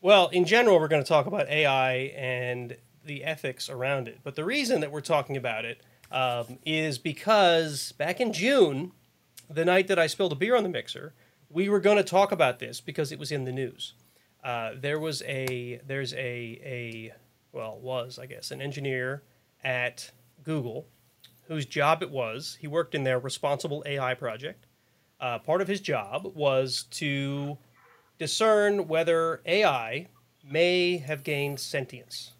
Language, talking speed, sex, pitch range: English, 170 wpm, male, 125-160 Hz